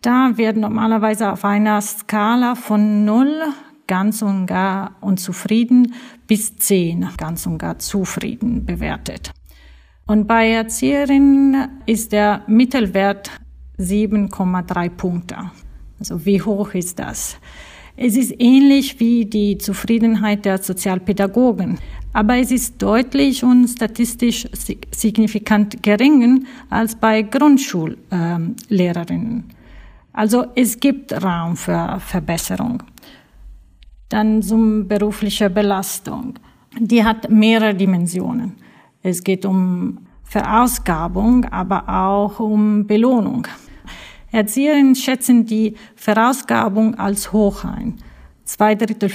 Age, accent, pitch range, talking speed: 40-59, Swiss, 195-235 Hz, 100 wpm